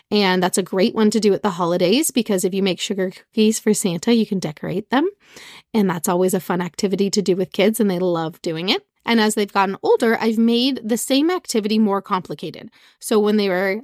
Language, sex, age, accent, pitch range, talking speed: English, female, 30-49, American, 195-240 Hz, 230 wpm